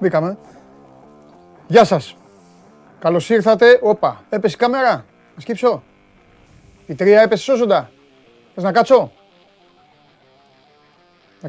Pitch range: 135-205 Hz